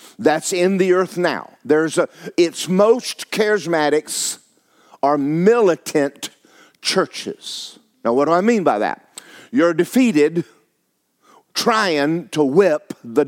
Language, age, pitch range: English, 50-69, 155-225 Hz